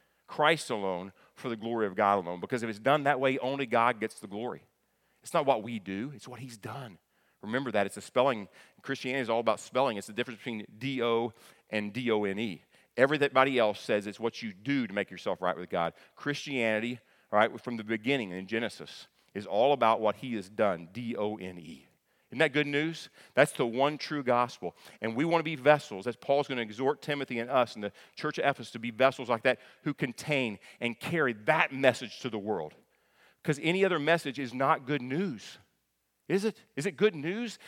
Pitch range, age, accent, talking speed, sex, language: 115-155 Hz, 40-59, American, 205 wpm, male, English